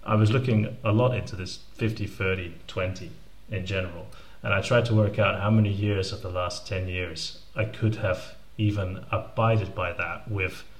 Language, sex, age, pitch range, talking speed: English, male, 30-49, 95-115 Hz, 190 wpm